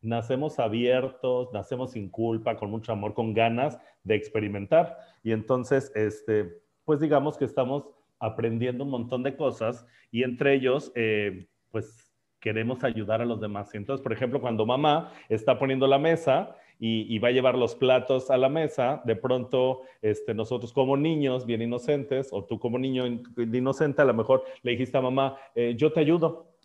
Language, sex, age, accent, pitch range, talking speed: Spanish, male, 30-49, Mexican, 120-145 Hz, 175 wpm